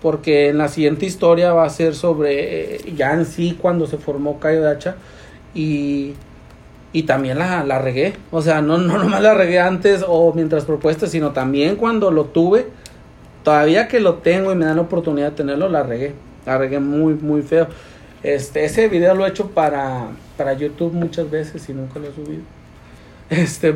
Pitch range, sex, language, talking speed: 140-165 Hz, male, Spanish, 190 wpm